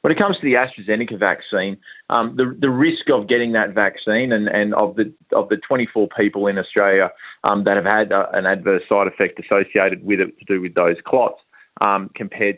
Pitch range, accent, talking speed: 95-110 Hz, Australian, 200 wpm